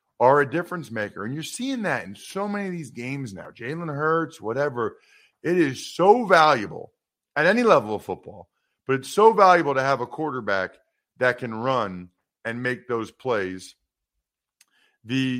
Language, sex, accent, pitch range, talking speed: English, male, American, 115-160 Hz, 170 wpm